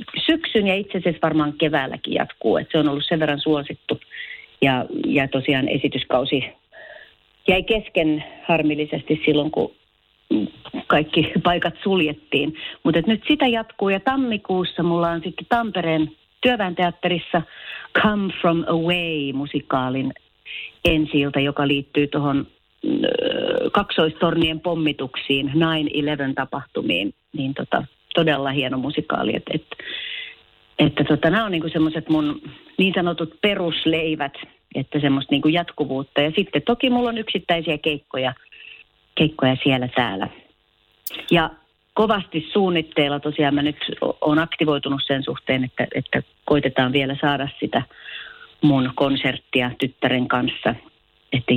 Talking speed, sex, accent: 115 wpm, female, native